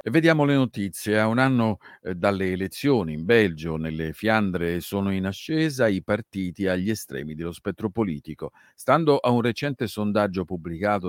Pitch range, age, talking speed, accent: 95-125 Hz, 50-69, 155 wpm, native